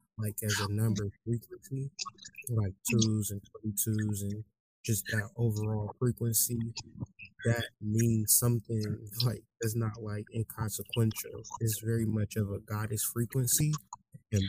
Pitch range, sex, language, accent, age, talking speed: 105-115 Hz, male, English, American, 20-39, 125 wpm